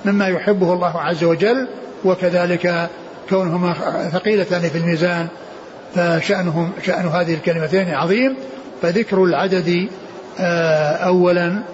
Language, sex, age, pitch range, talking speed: Arabic, male, 60-79, 170-215 Hz, 85 wpm